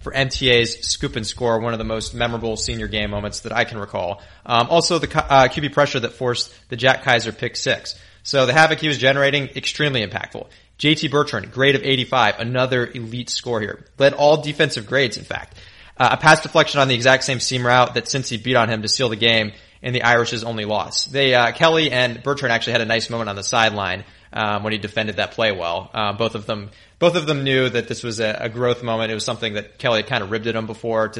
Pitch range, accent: 110-135 Hz, American